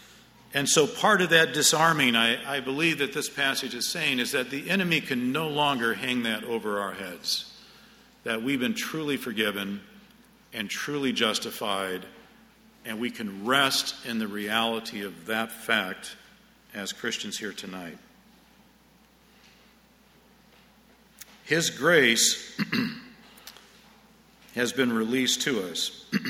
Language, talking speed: English, 125 wpm